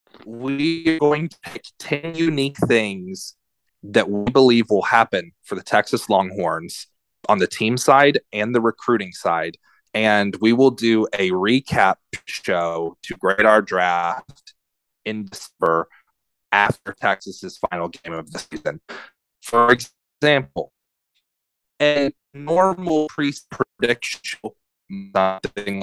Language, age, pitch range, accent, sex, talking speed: English, 30-49, 100-145 Hz, American, male, 120 wpm